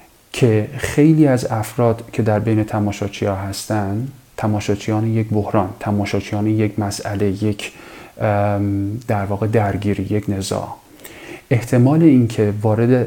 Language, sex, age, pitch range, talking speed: English, male, 40-59, 105-115 Hz, 120 wpm